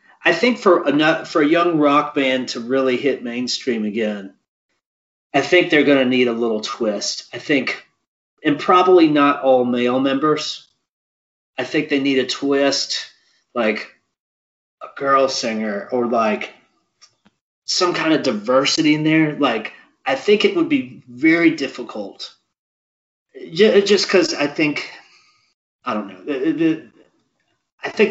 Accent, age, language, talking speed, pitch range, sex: American, 30-49, English, 145 wpm, 130-205 Hz, male